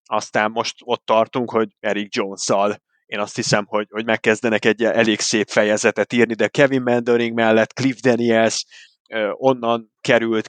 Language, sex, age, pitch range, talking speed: Hungarian, male, 30-49, 110-125 Hz, 150 wpm